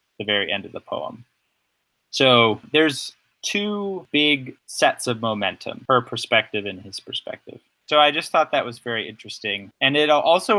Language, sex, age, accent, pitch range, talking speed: English, male, 30-49, American, 110-135 Hz, 165 wpm